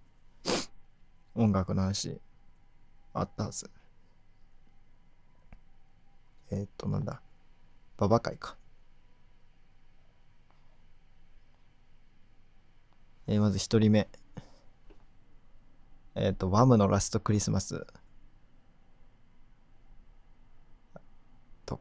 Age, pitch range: 20-39, 95-120 Hz